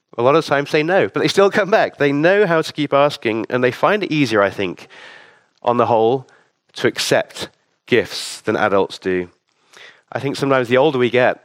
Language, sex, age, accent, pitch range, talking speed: English, male, 30-49, British, 130-165 Hz, 210 wpm